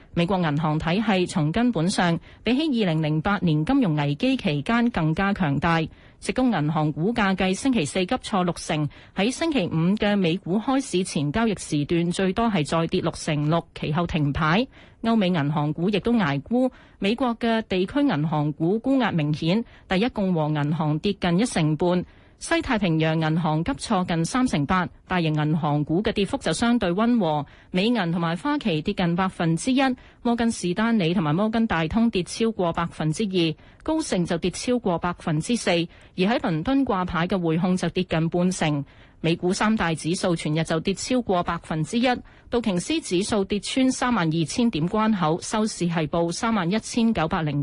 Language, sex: Chinese, female